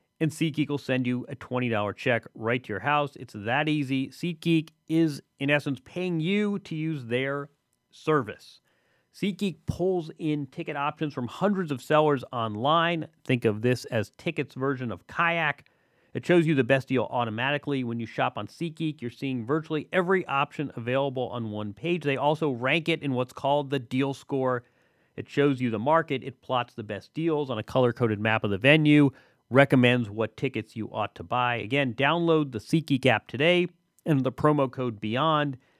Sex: male